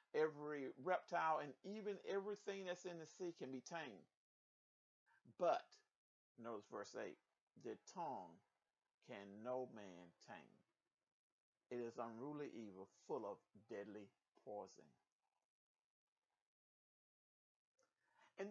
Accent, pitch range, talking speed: American, 145-205 Hz, 100 wpm